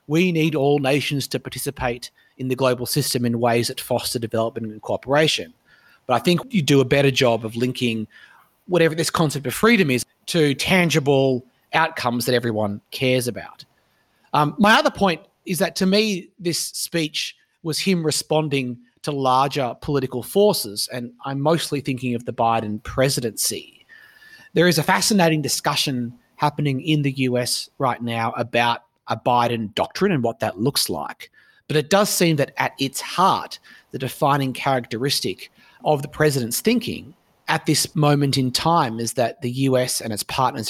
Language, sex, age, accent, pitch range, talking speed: English, male, 30-49, Australian, 120-155 Hz, 165 wpm